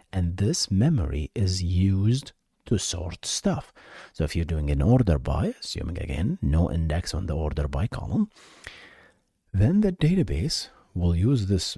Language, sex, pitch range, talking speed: English, male, 80-115 Hz, 155 wpm